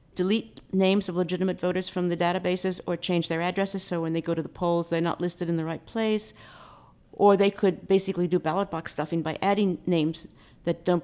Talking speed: 210 wpm